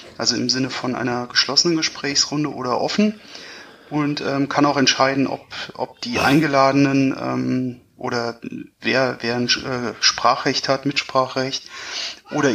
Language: German